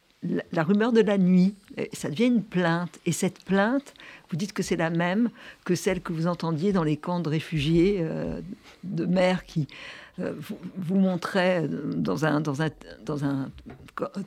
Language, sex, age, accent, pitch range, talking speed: French, female, 60-79, French, 160-205 Hz, 175 wpm